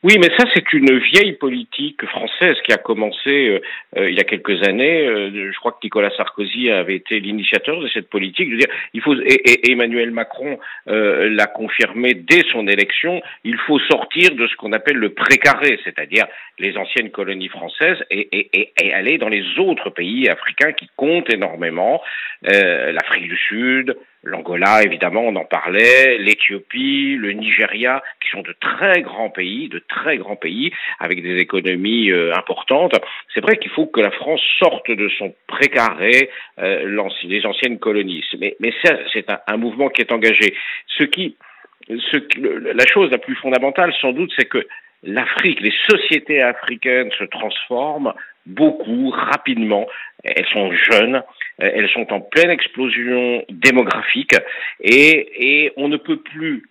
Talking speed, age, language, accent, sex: 170 wpm, 50-69, French, French, male